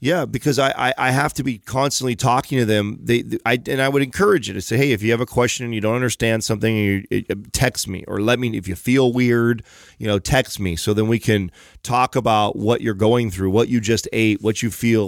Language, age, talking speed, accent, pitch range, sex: English, 30-49, 265 wpm, American, 105-125 Hz, male